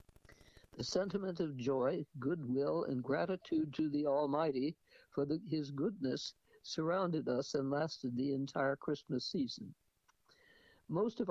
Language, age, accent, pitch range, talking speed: English, 60-79, American, 140-185 Hz, 120 wpm